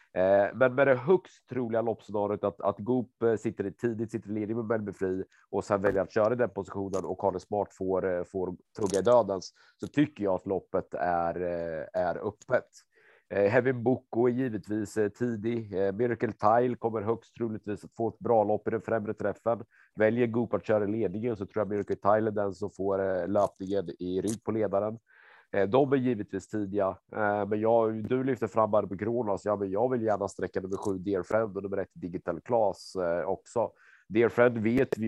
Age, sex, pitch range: 30-49, male, 95-110 Hz